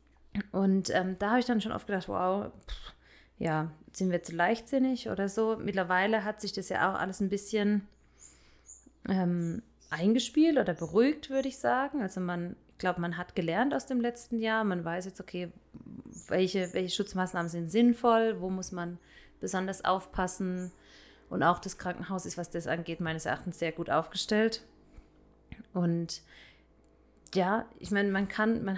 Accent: German